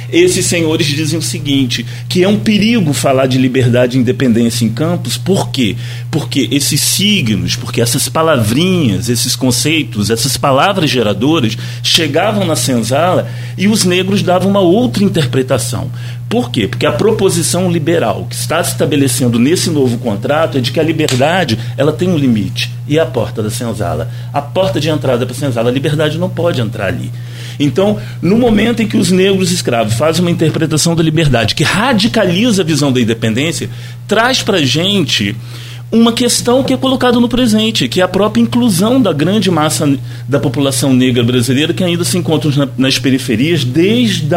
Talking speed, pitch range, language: 170 wpm, 125-175 Hz, Portuguese